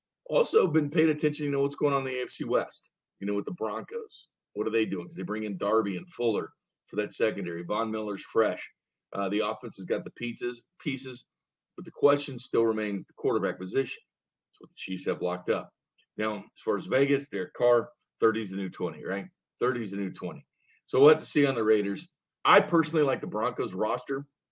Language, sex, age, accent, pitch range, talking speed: English, male, 40-59, American, 100-145 Hz, 225 wpm